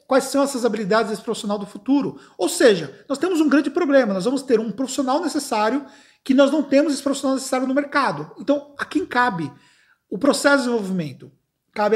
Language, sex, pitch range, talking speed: Portuguese, male, 220-280 Hz, 195 wpm